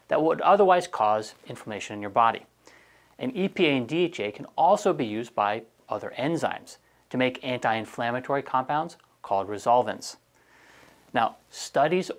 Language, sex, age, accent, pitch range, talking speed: English, male, 30-49, American, 110-145 Hz, 130 wpm